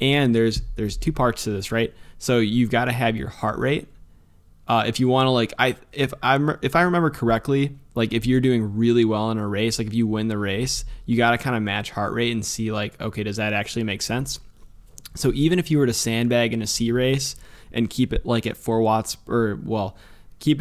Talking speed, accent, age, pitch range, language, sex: 240 wpm, American, 20-39, 105-125 Hz, English, male